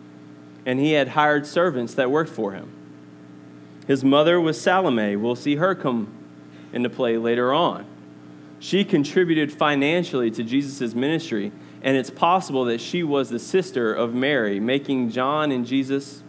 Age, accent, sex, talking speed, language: 20-39, American, male, 150 wpm, English